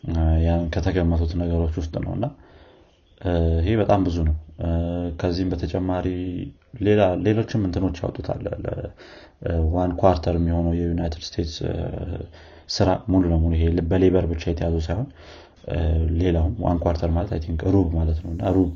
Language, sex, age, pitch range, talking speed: Amharic, male, 30-49, 80-95 Hz, 120 wpm